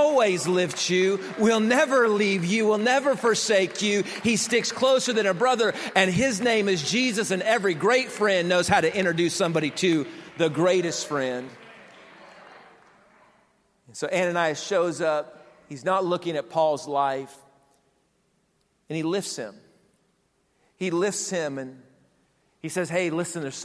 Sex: male